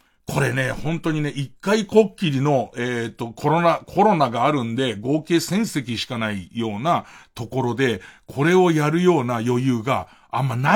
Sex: male